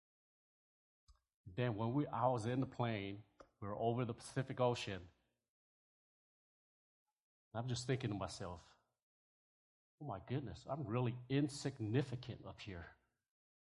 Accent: American